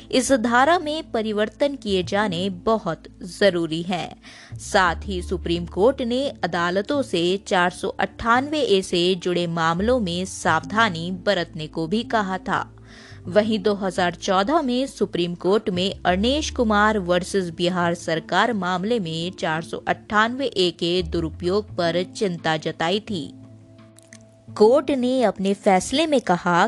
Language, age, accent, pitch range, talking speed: Hindi, 20-39, native, 175-220 Hz, 125 wpm